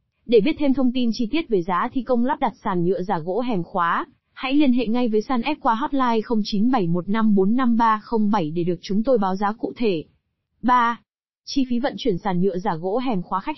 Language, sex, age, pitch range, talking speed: Vietnamese, female, 20-39, 195-250 Hz, 215 wpm